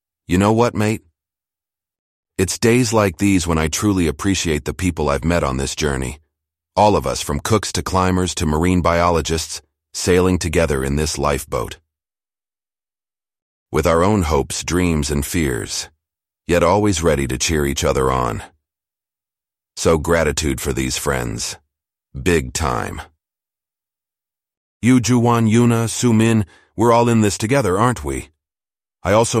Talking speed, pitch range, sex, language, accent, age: 145 wpm, 75-95 Hz, male, English, American, 40-59